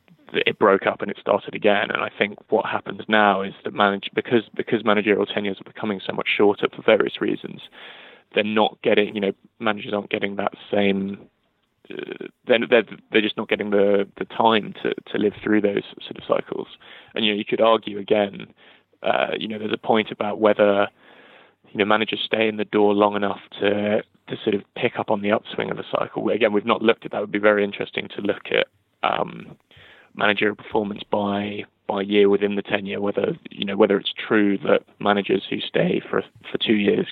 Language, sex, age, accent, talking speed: English, male, 20-39, British, 210 wpm